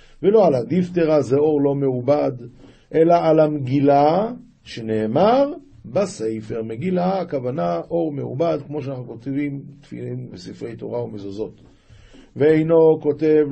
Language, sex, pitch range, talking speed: Hebrew, male, 125-165 Hz, 105 wpm